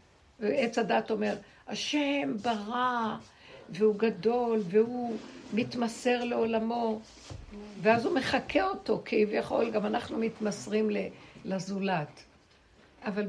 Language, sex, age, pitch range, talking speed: Hebrew, female, 60-79, 185-230 Hz, 90 wpm